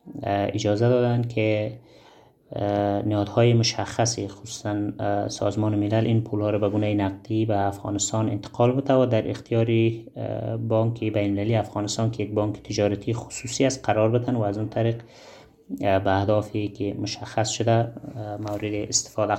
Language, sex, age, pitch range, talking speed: German, male, 30-49, 105-115 Hz, 135 wpm